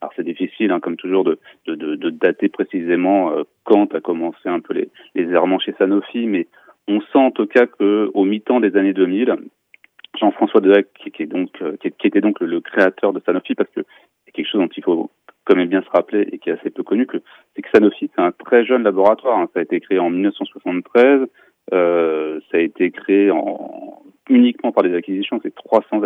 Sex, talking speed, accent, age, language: male, 210 wpm, French, 30-49, Italian